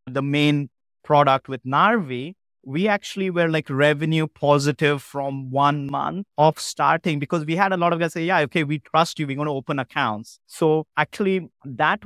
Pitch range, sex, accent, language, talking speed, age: 130-155 Hz, male, Indian, English, 185 wpm, 30-49